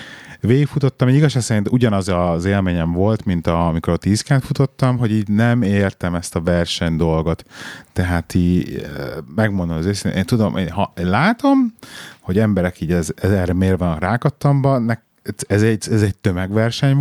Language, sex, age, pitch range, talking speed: Hungarian, male, 30-49, 85-115 Hz, 160 wpm